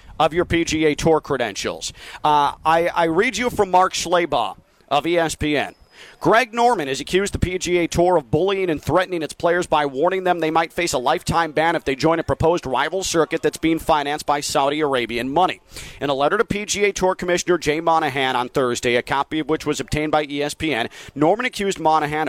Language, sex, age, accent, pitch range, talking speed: English, male, 40-59, American, 135-175 Hz, 195 wpm